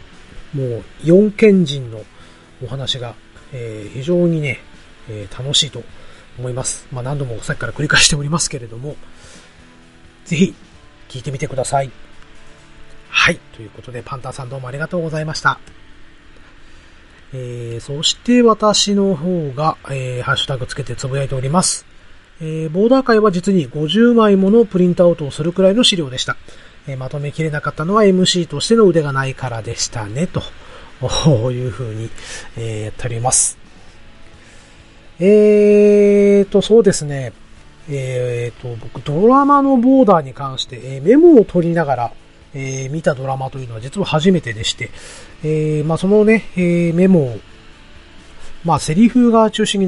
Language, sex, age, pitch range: Japanese, male, 40-59, 115-180 Hz